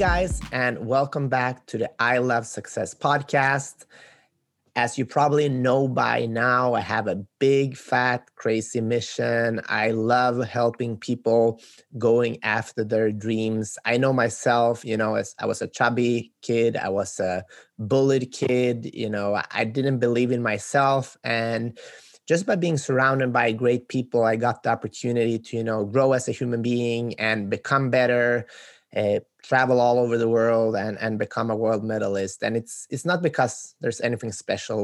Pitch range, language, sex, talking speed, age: 115-130 Hz, English, male, 165 wpm, 20-39